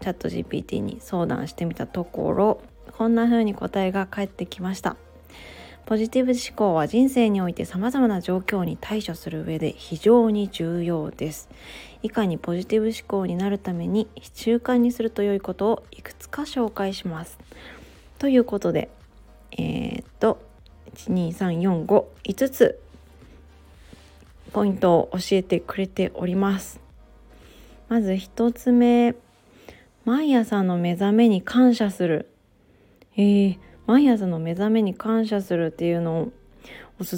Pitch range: 175-225 Hz